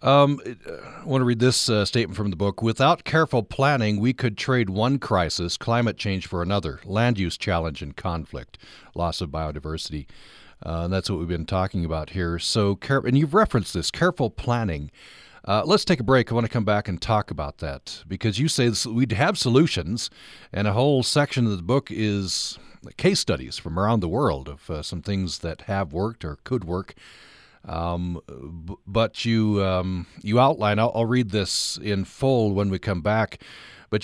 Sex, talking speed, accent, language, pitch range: male, 190 wpm, American, English, 90-120 Hz